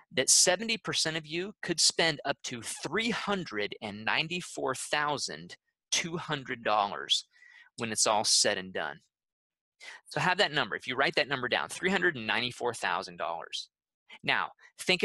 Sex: male